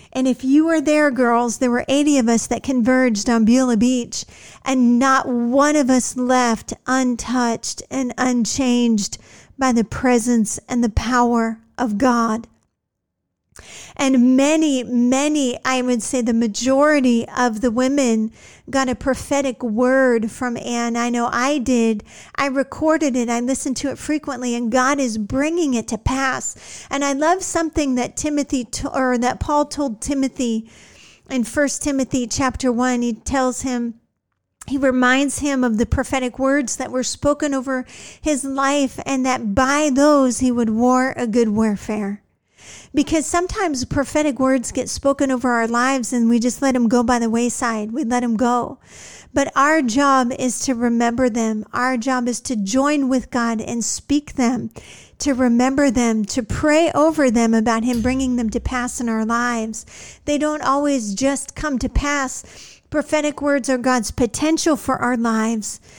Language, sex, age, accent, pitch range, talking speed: English, female, 50-69, American, 240-275 Hz, 165 wpm